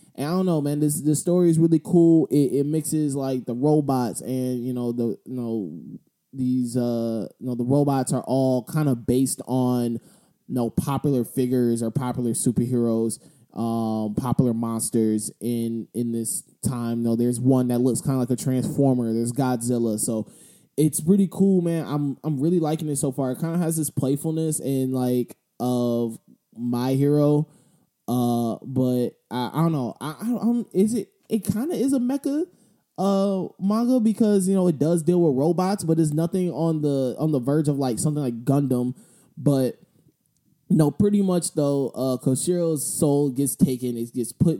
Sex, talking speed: male, 190 wpm